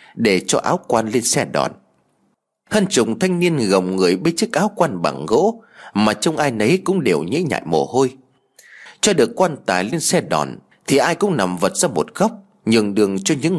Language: Vietnamese